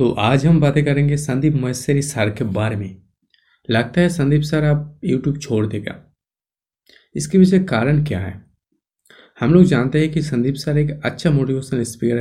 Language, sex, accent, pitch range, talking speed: Hindi, male, native, 115-150 Hz, 170 wpm